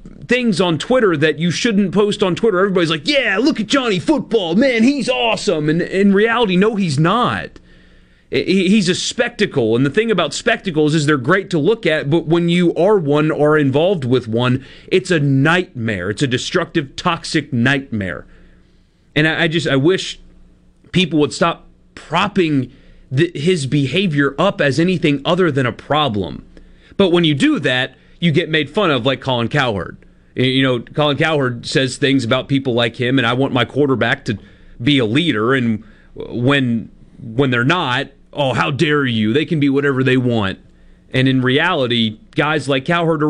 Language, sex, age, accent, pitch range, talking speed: English, male, 30-49, American, 125-175 Hz, 175 wpm